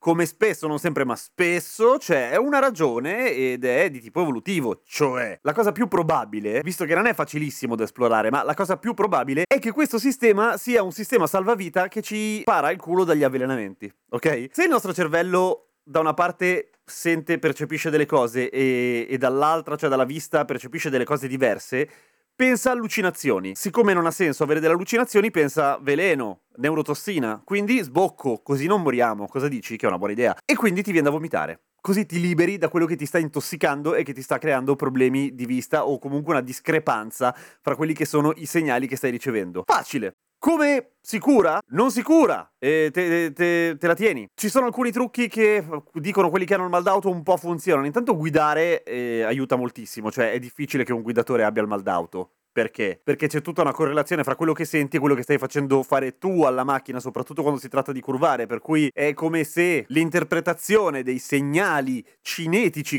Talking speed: 200 wpm